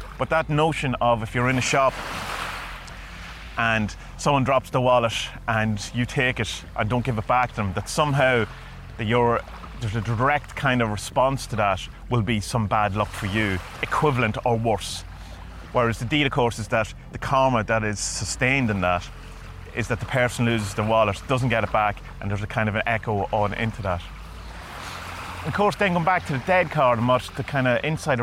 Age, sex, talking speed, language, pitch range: 30-49, male, 205 wpm, English, 105-145 Hz